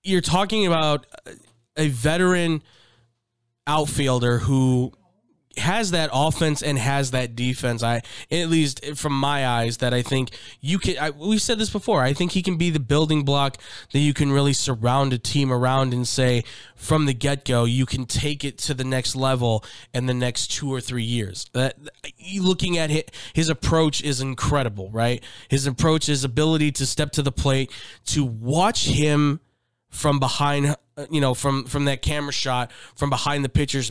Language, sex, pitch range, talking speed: English, male, 125-150 Hz, 180 wpm